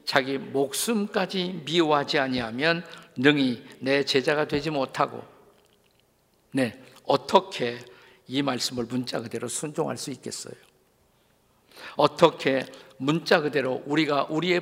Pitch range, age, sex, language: 125-160 Hz, 50-69, male, Korean